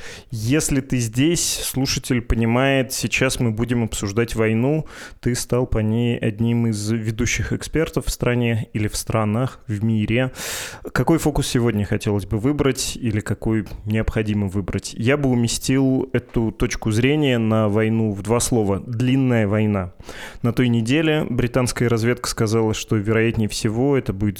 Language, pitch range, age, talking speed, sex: Russian, 105-125 Hz, 20-39, 145 wpm, male